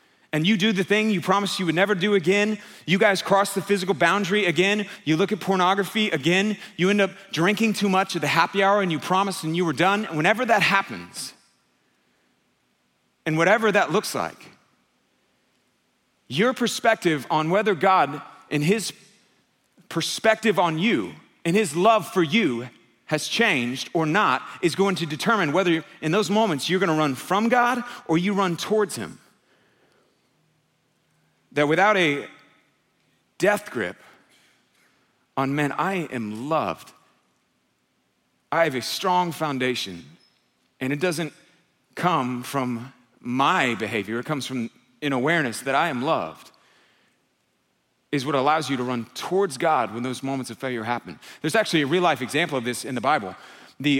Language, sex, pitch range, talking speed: English, male, 145-200 Hz, 160 wpm